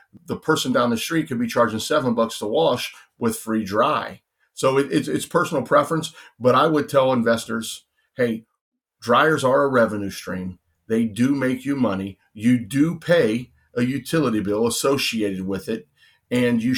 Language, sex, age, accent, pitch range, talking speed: English, male, 40-59, American, 110-130 Hz, 170 wpm